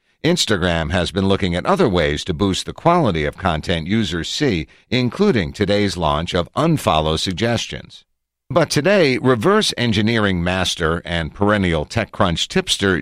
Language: English